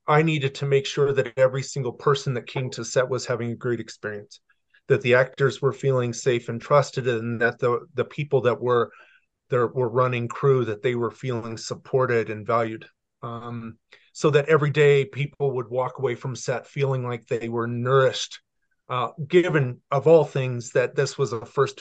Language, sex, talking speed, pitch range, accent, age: English, male, 195 wpm, 125-155 Hz, American, 30-49